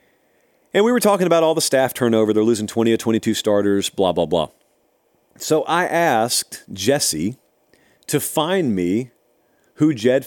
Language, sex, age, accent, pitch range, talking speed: English, male, 40-59, American, 115-165 Hz, 160 wpm